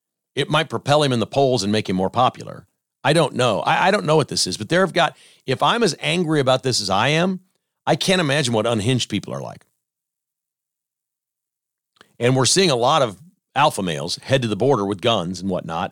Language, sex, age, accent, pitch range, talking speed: English, male, 40-59, American, 110-145 Hz, 220 wpm